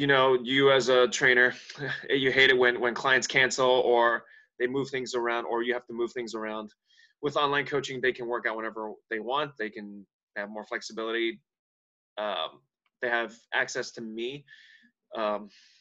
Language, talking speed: English, 180 wpm